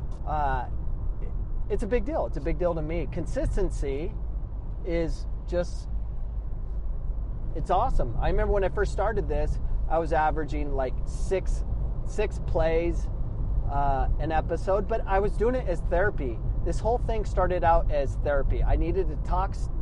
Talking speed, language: 155 wpm, English